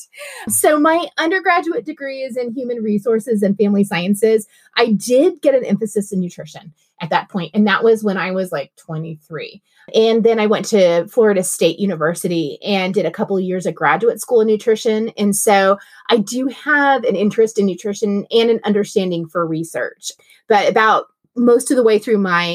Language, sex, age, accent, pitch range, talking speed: English, female, 30-49, American, 175-230 Hz, 185 wpm